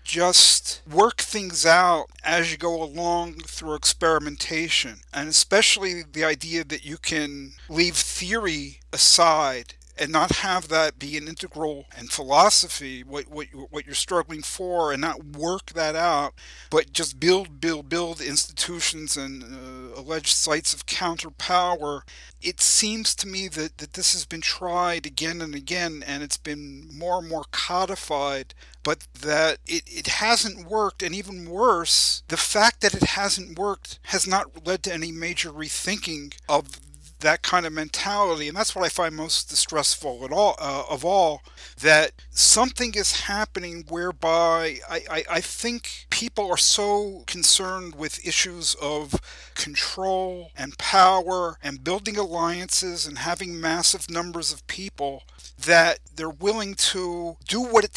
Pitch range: 150-185 Hz